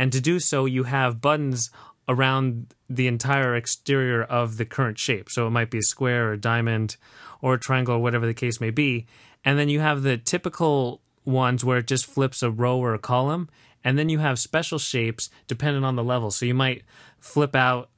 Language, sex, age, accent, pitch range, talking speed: English, male, 30-49, American, 120-140 Hz, 215 wpm